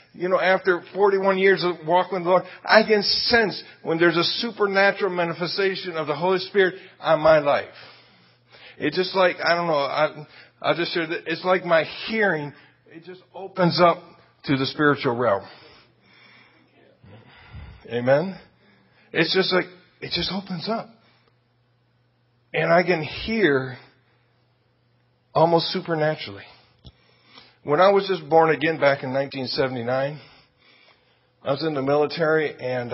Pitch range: 125-180 Hz